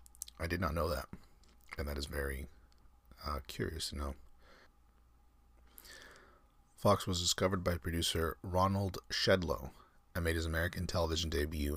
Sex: male